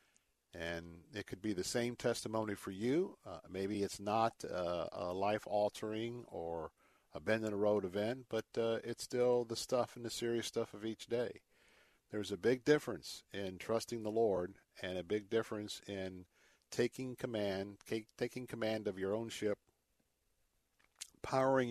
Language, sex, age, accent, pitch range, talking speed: English, male, 50-69, American, 95-115 Hz, 165 wpm